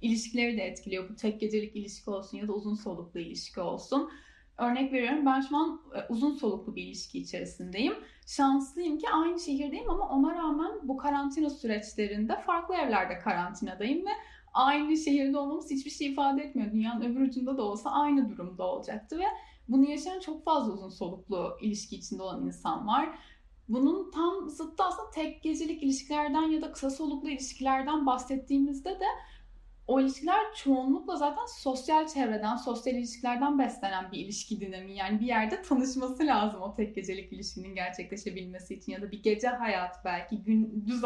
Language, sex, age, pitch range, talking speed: Turkish, female, 10-29, 210-295 Hz, 160 wpm